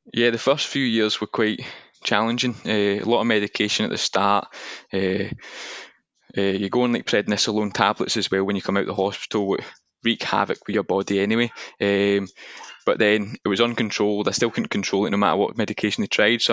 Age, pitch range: 20-39, 95-110 Hz